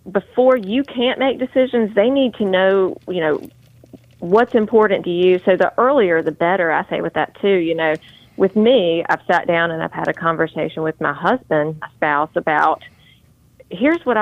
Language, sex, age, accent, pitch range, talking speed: English, female, 30-49, American, 165-205 Hz, 190 wpm